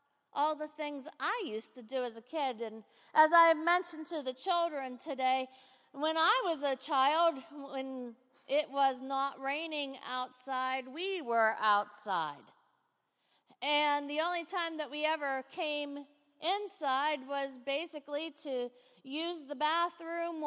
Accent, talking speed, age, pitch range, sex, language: American, 140 wpm, 40-59, 255-300 Hz, female, English